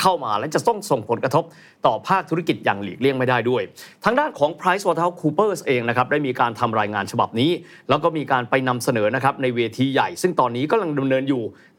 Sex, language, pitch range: male, Thai, 125-180 Hz